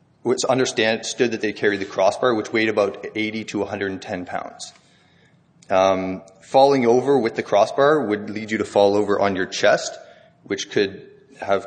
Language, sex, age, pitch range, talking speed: English, male, 30-49, 100-120 Hz, 165 wpm